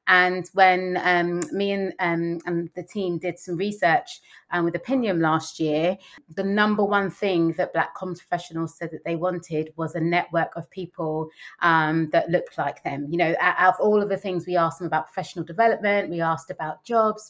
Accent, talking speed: British, 200 wpm